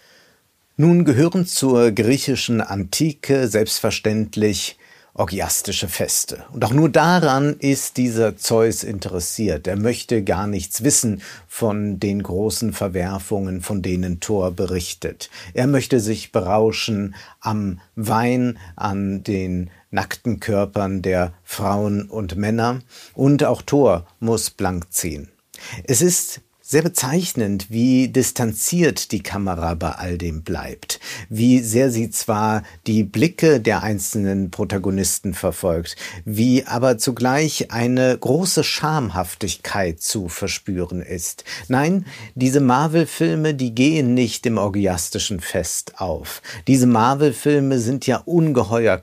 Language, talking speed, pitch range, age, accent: German, 115 wpm, 100-130 Hz, 50-69, German